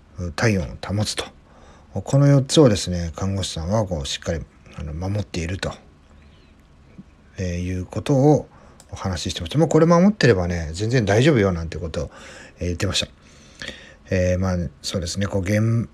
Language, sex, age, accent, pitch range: Japanese, male, 40-59, native, 90-115 Hz